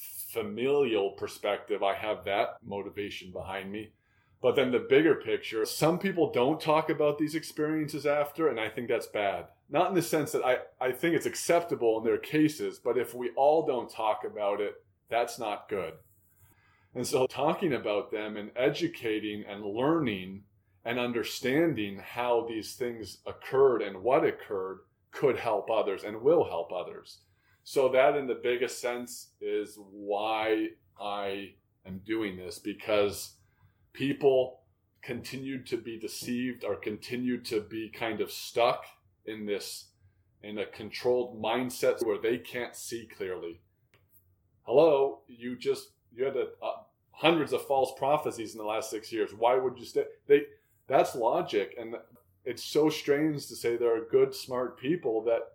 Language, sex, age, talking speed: English, male, 20-39, 160 wpm